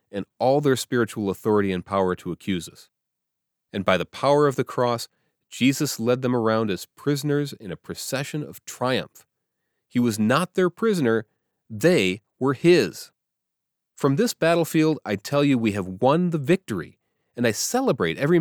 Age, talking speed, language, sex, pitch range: 30-49, 165 wpm, English, male, 110-160 Hz